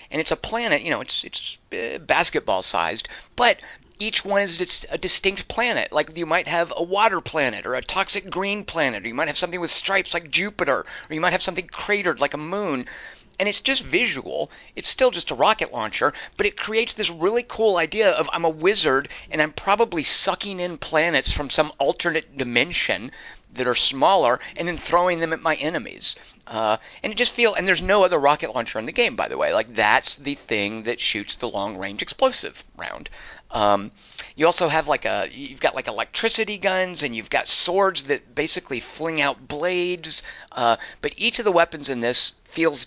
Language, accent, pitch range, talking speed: English, American, 140-200 Hz, 200 wpm